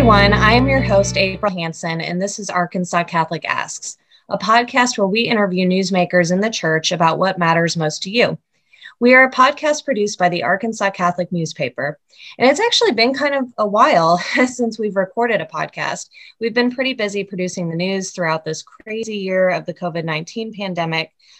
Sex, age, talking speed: female, 20-39, 180 wpm